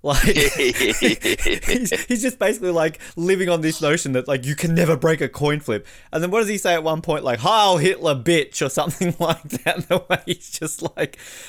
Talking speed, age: 215 wpm, 20-39